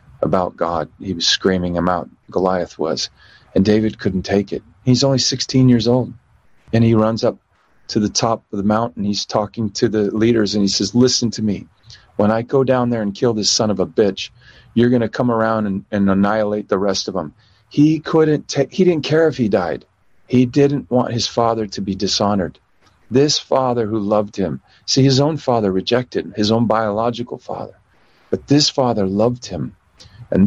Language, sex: English, male